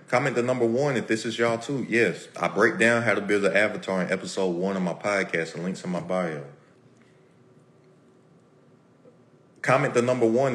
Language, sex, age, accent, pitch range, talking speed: English, male, 30-49, American, 90-110 Hz, 190 wpm